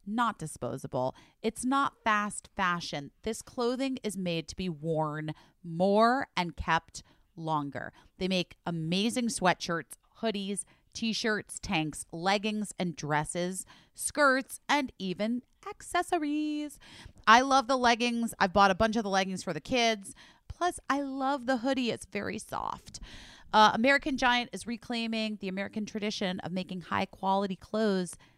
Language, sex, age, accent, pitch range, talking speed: English, female, 30-49, American, 175-235 Hz, 140 wpm